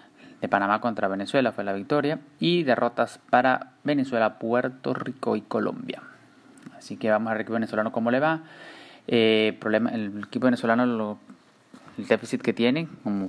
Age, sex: 20-39, male